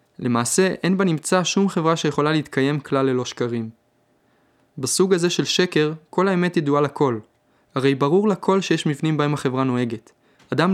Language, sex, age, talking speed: Hebrew, male, 20-39, 150 wpm